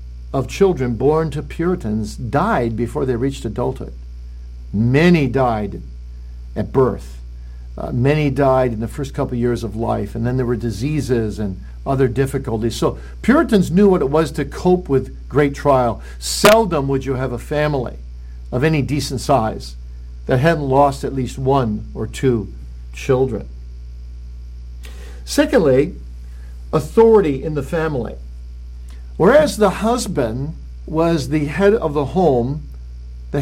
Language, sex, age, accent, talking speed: English, male, 60-79, American, 140 wpm